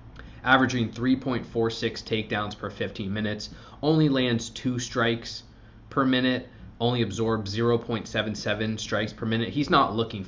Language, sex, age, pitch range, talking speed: English, male, 20-39, 105-125 Hz, 125 wpm